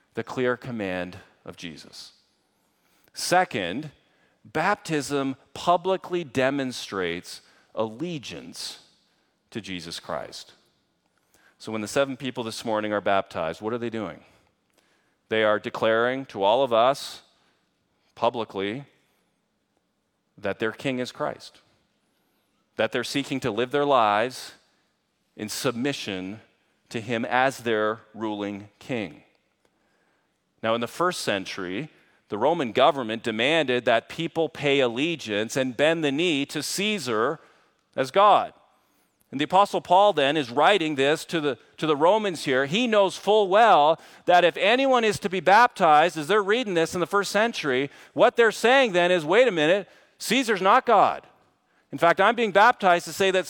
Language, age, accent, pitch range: English, 40-59, American, 115-185 Hz